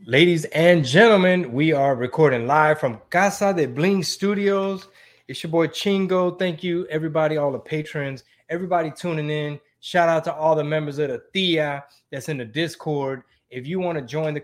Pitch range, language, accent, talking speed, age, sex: 130-160 Hz, English, American, 185 wpm, 20-39, male